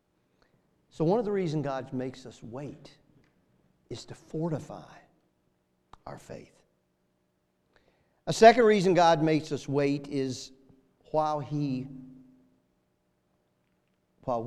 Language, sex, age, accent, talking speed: English, male, 50-69, American, 100 wpm